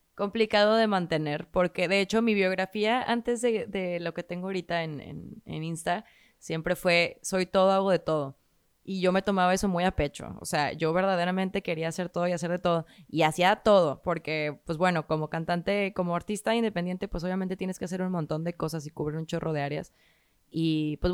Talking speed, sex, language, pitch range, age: 205 wpm, female, Spanish, 160-190 Hz, 20-39